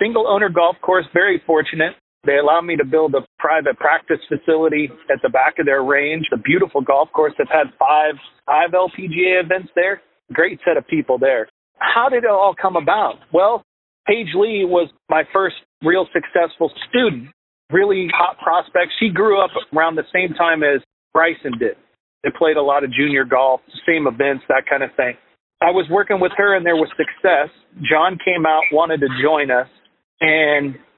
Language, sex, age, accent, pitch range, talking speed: English, male, 40-59, American, 150-195 Hz, 185 wpm